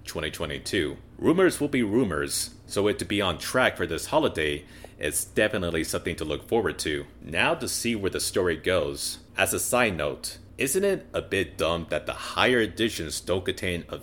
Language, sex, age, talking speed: English, male, 30-49, 190 wpm